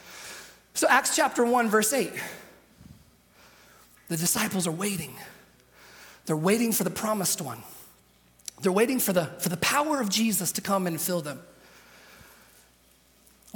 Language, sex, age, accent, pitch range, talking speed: English, male, 30-49, American, 145-190 Hz, 135 wpm